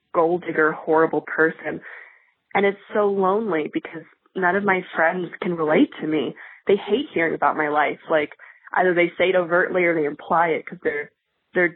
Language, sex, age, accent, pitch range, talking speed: English, female, 20-39, American, 160-195 Hz, 185 wpm